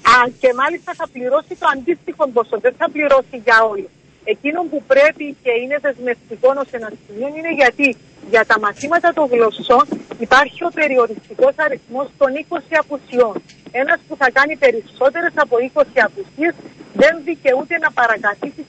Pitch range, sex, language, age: 240-320 Hz, female, Greek, 40-59